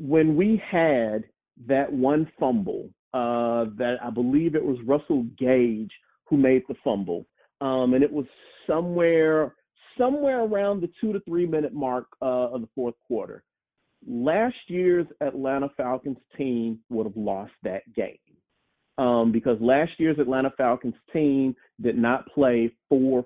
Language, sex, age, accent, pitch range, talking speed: English, male, 40-59, American, 125-175 Hz, 145 wpm